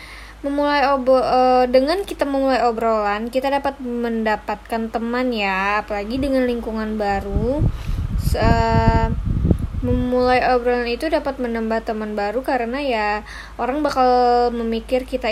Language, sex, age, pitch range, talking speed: Indonesian, female, 20-39, 210-255 Hz, 120 wpm